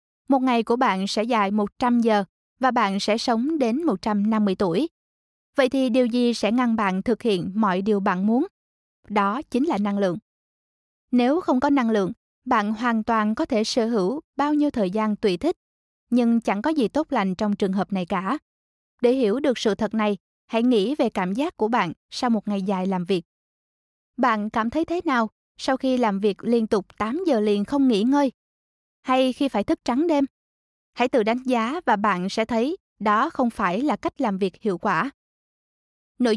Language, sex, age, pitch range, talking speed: Vietnamese, female, 20-39, 210-265 Hz, 200 wpm